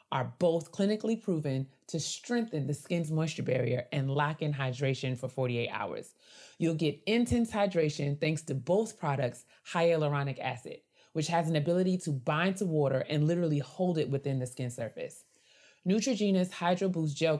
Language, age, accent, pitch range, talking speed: English, 30-49, American, 135-180 Hz, 160 wpm